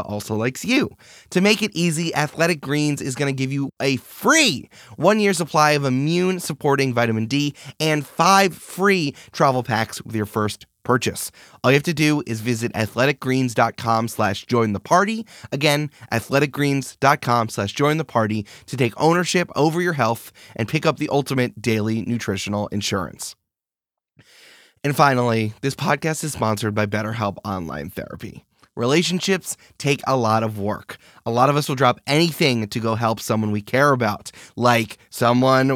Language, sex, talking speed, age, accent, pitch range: English, male, 155 wpm, 20-39, American, 115-150 Hz